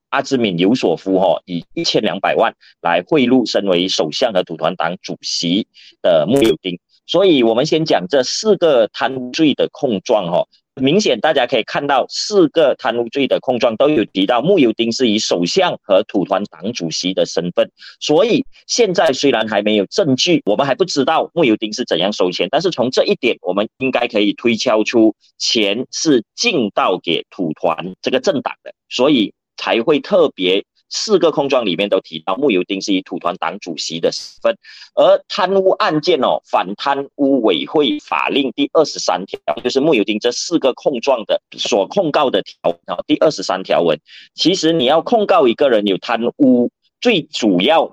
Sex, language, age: male, Chinese, 30-49